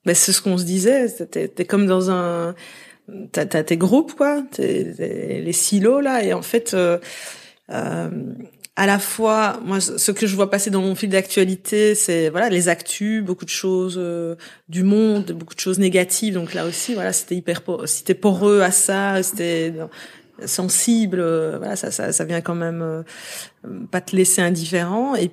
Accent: French